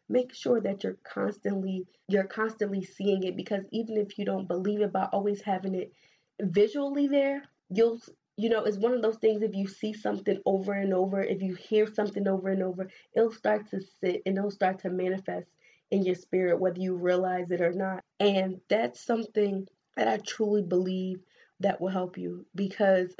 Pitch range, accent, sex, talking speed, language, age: 185-210 Hz, American, female, 190 wpm, English, 20-39